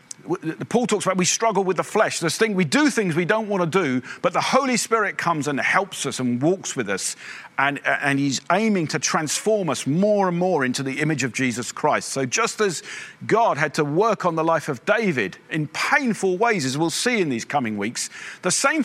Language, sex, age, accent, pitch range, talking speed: English, male, 50-69, British, 135-215 Hz, 225 wpm